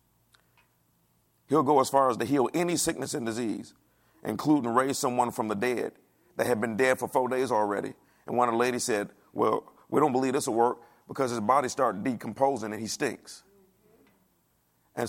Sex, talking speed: male, 185 wpm